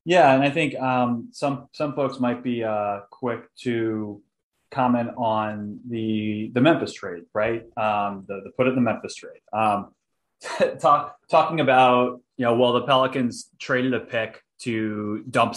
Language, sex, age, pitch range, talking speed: English, male, 20-39, 110-135 Hz, 170 wpm